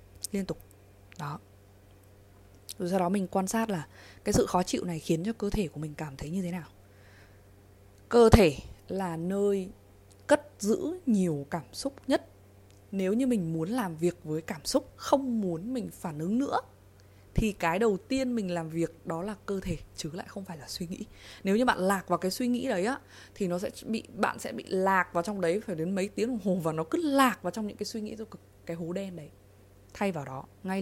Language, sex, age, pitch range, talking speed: Vietnamese, female, 20-39, 140-205 Hz, 220 wpm